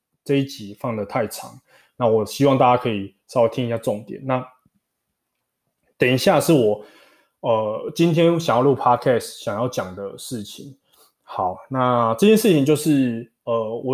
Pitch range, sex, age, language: 120-160 Hz, male, 20-39, Chinese